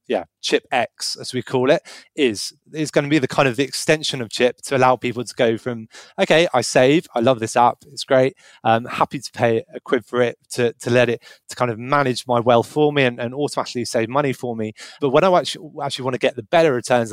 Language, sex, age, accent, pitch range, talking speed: English, male, 20-39, British, 115-140 Hz, 250 wpm